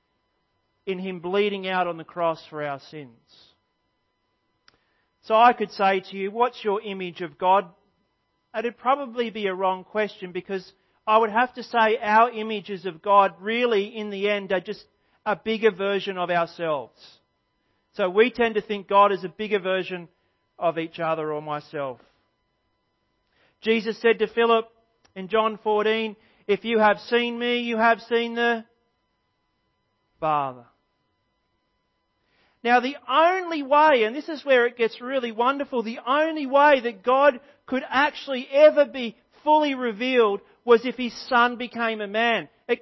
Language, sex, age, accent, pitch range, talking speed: English, male, 40-59, Australian, 195-260 Hz, 160 wpm